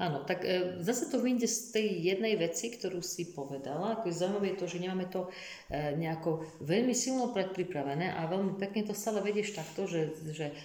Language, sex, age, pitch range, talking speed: Slovak, female, 50-69, 150-190 Hz, 170 wpm